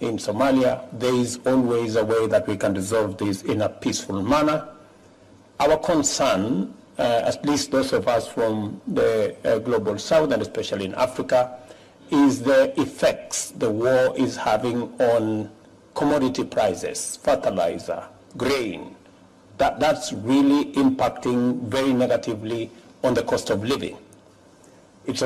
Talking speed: 135 wpm